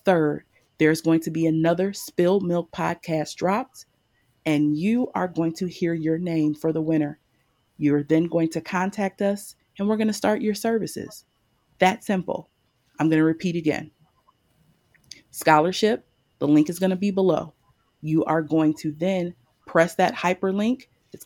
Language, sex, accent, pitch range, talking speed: English, female, American, 150-185 Hz, 165 wpm